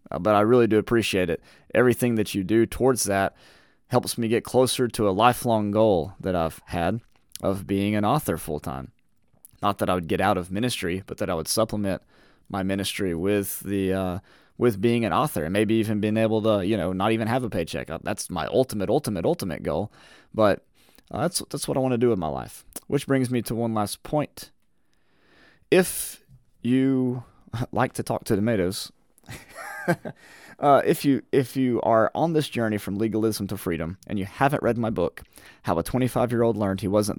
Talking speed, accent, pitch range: 195 wpm, American, 95-125 Hz